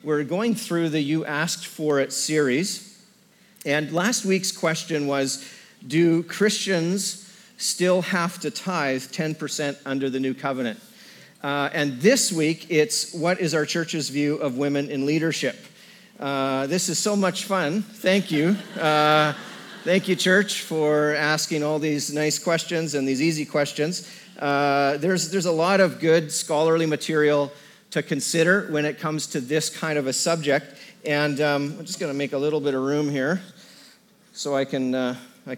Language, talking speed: English, 165 wpm